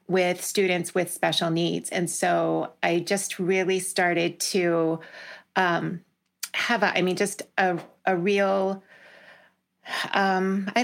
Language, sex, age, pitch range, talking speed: English, female, 30-49, 175-195 Hz, 125 wpm